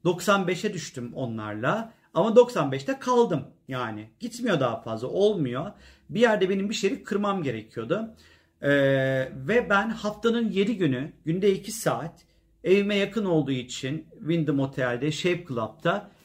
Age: 40-59